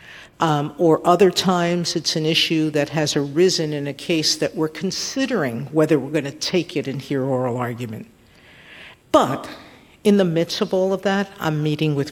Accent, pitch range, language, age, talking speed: American, 145-195 Hz, English, 50-69, 185 wpm